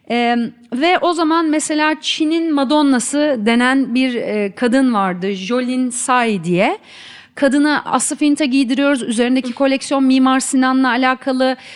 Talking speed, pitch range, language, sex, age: 125 wpm, 230-285 Hz, Turkish, female, 40-59